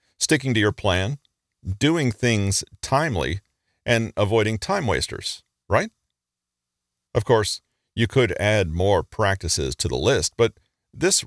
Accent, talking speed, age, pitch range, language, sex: American, 130 wpm, 40-59, 85-115 Hz, English, male